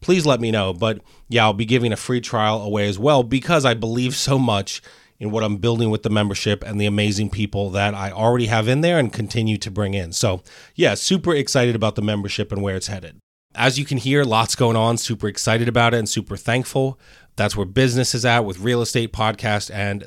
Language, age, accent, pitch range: English, 30-49, American, 105-120 Hz